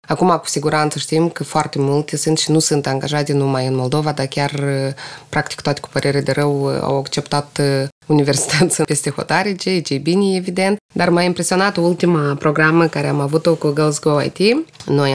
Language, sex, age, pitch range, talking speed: Romanian, female, 20-39, 145-170 Hz, 175 wpm